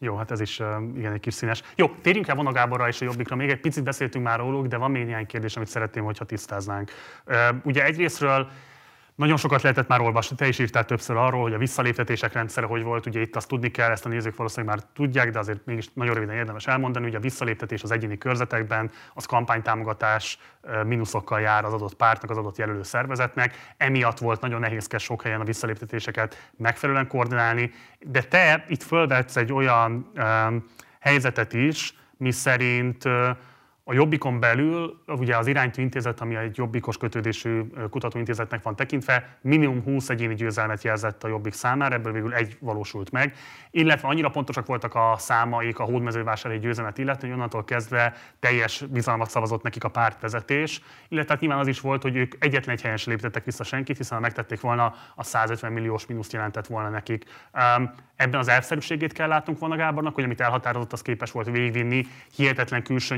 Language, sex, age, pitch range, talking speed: Hungarian, male, 30-49, 115-130 Hz, 185 wpm